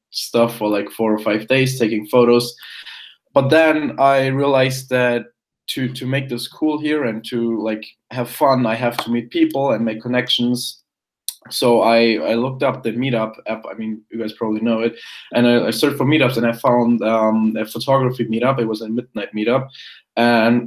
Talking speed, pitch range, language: 195 wpm, 115-135 Hz, English